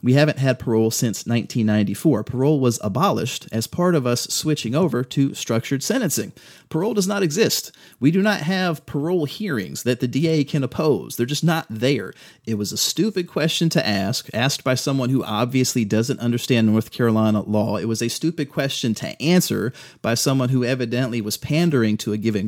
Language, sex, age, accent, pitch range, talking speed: English, male, 30-49, American, 110-140 Hz, 185 wpm